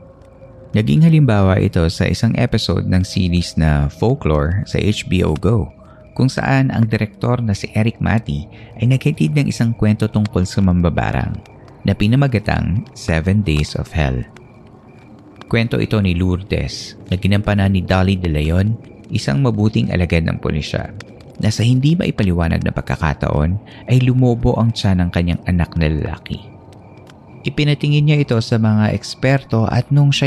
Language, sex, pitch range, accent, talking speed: Filipino, male, 90-115 Hz, native, 145 wpm